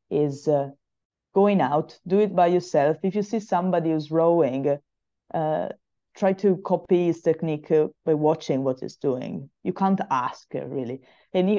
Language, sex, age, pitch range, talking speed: English, female, 20-39, 145-180 Hz, 155 wpm